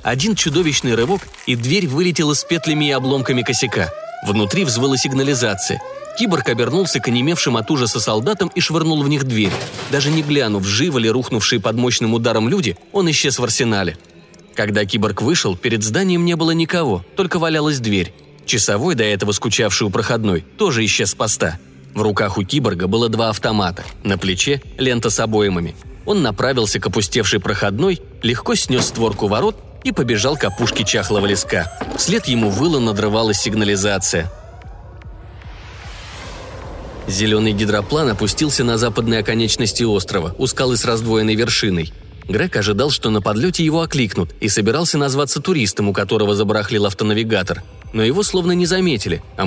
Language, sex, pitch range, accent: Russian, male, 105-140 Hz, native